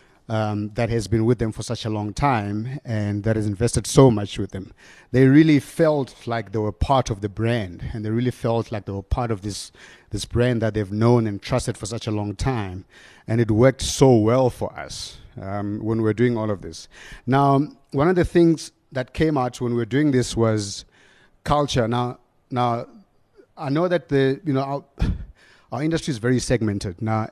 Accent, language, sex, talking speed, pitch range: South African, English, male, 210 wpm, 110-135 Hz